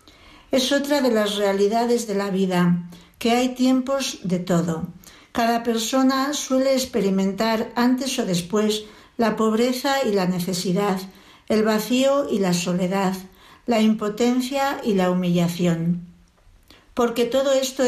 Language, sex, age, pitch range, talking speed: Spanish, female, 60-79, 195-245 Hz, 130 wpm